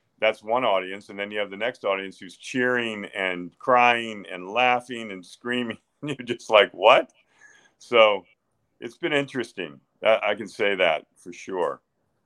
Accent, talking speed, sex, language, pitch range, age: American, 155 wpm, male, English, 100-125 Hz, 50-69